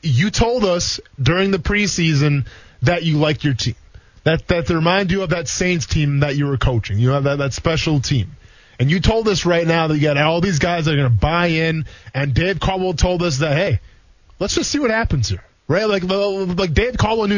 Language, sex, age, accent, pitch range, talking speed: English, male, 20-39, American, 135-195 Hz, 230 wpm